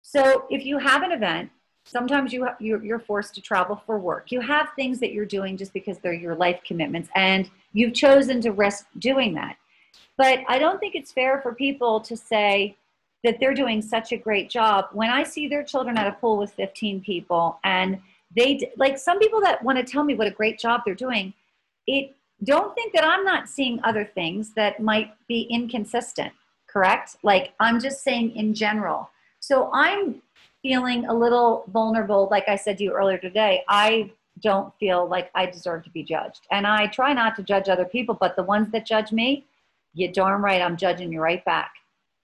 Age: 40-59